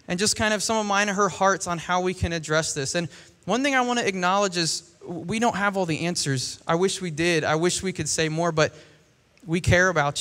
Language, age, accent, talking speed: English, 20-39, American, 260 wpm